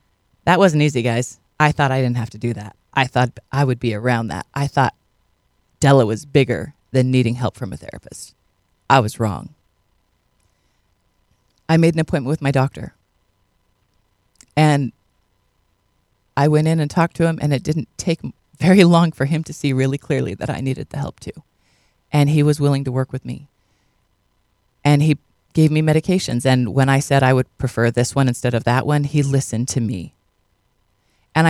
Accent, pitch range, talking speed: American, 110-160 Hz, 185 wpm